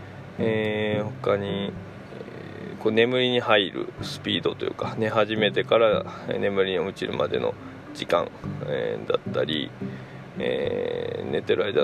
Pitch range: 110-140 Hz